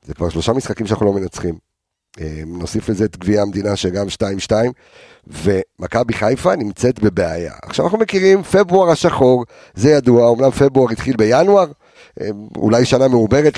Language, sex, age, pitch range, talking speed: Hebrew, male, 50-69, 95-135 Hz, 140 wpm